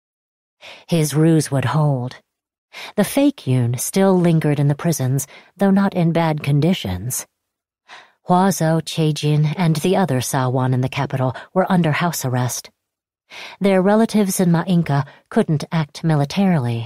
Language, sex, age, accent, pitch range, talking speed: English, female, 40-59, American, 135-175 Hz, 130 wpm